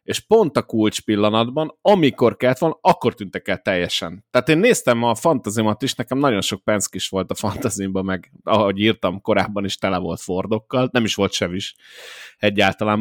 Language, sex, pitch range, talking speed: Hungarian, male, 100-130 Hz, 175 wpm